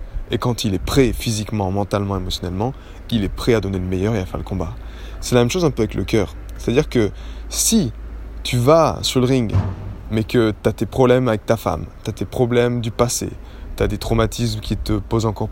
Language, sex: French, male